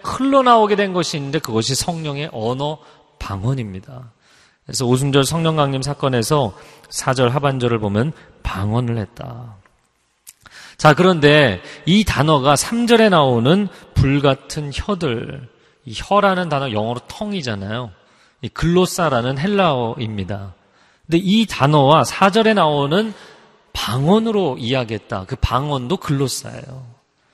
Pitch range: 120-180 Hz